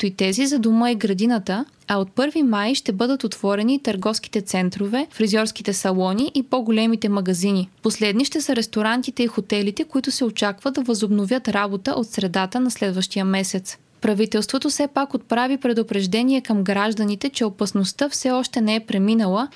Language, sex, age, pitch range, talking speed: Bulgarian, female, 20-39, 205-250 Hz, 155 wpm